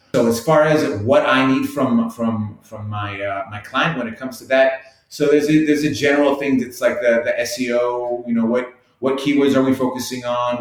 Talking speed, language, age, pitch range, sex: 225 wpm, English, 30-49, 110-135 Hz, male